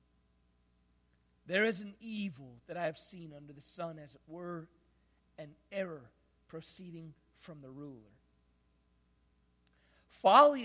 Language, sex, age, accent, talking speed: English, male, 50-69, American, 120 wpm